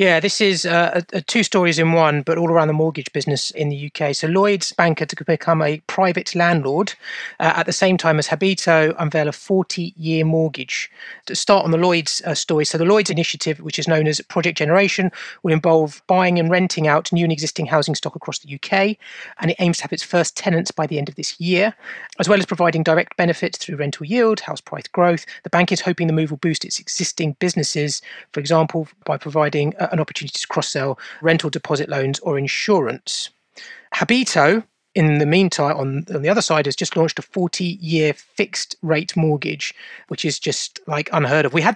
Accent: British